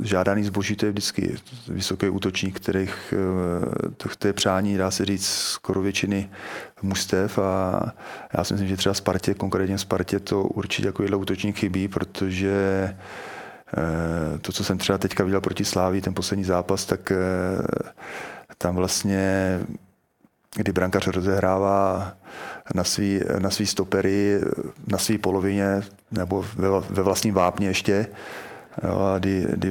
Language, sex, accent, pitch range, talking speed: Czech, male, native, 95-100 Hz, 130 wpm